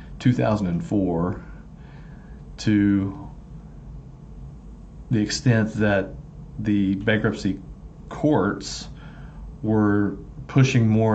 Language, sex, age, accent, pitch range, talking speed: English, male, 40-59, American, 90-110 Hz, 60 wpm